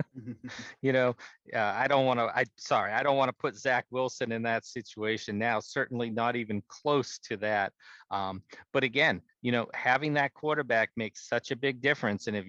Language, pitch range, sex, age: English, 125-145 Hz, male, 40-59